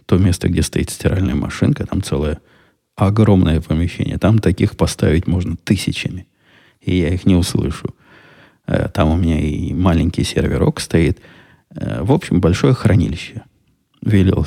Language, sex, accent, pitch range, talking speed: Russian, male, native, 85-105 Hz, 135 wpm